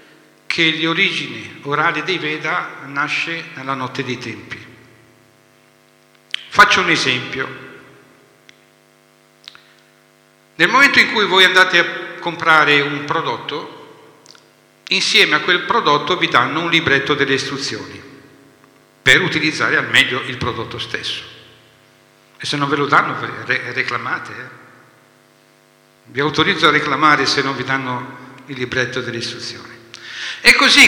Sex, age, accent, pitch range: male, 50-69, native, 125-170 Hz